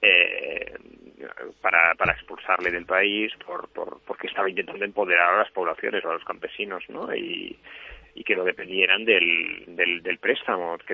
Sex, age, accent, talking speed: male, 30-49, Spanish, 165 wpm